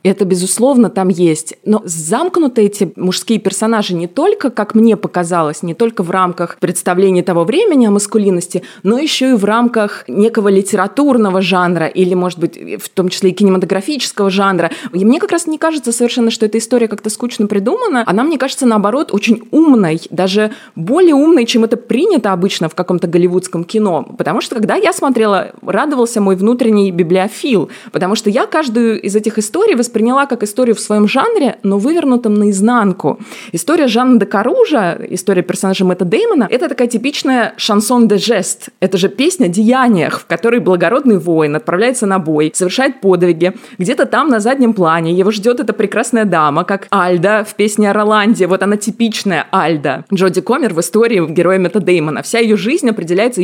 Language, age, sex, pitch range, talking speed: Russian, 20-39, female, 185-240 Hz, 175 wpm